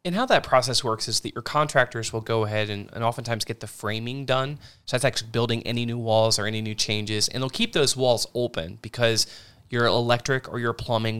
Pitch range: 115-130 Hz